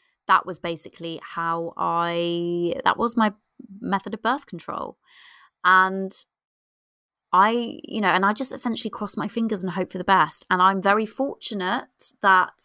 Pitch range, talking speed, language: 175-230 Hz, 155 wpm, English